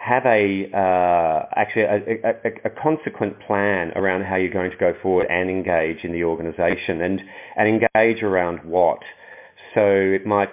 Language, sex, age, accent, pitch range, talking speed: English, male, 40-59, Australian, 90-105 Hz, 170 wpm